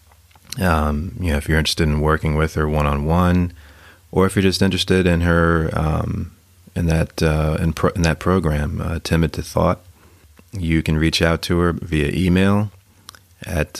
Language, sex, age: English, male, 30-49